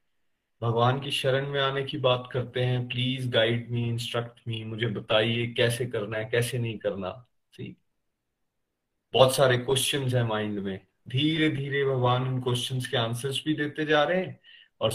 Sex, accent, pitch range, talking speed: male, native, 110-135 Hz, 165 wpm